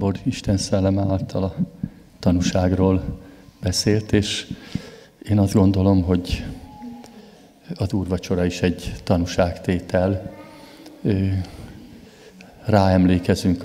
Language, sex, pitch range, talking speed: Hungarian, male, 90-100 Hz, 75 wpm